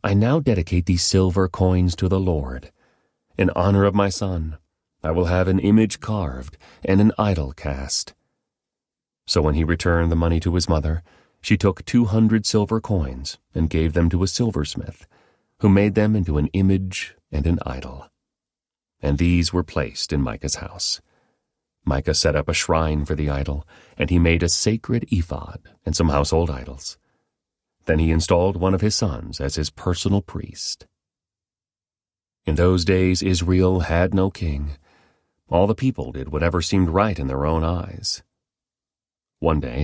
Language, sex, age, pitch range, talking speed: English, male, 40-59, 80-95 Hz, 165 wpm